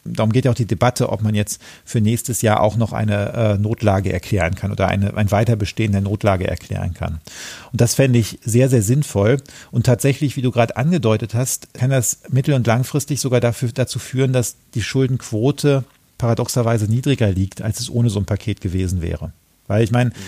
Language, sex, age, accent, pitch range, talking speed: German, male, 40-59, German, 110-130 Hz, 190 wpm